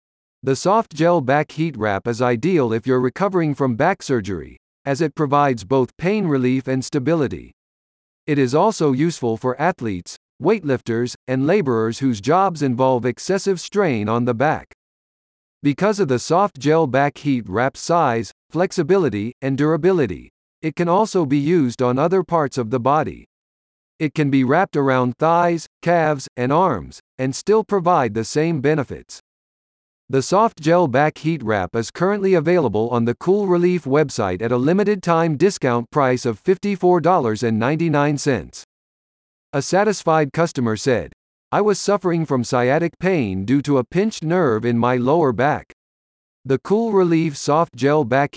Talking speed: 155 wpm